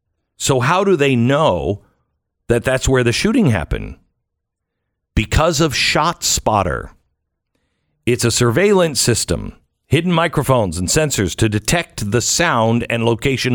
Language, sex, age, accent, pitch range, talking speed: English, male, 50-69, American, 105-135 Hz, 130 wpm